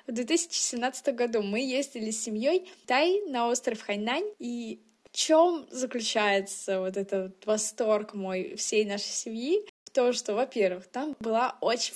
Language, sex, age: Russian, female, 20-39